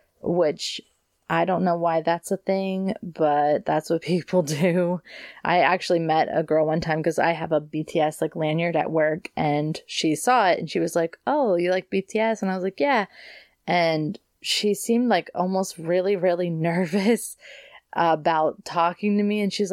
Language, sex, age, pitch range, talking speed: English, female, 20-39, 165-210 Hz, 180 wpm